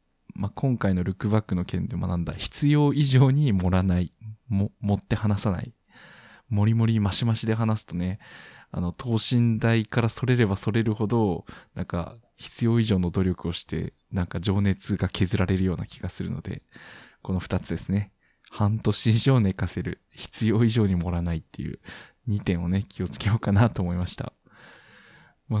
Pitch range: 95-115 Hz